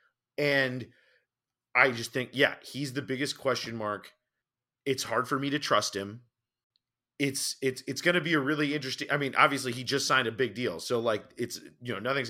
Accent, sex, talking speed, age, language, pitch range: American, male, 210 wpm, 30-49, English, 120-145 Hz